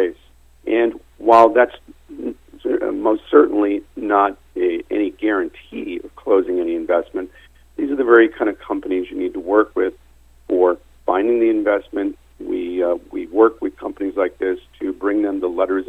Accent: American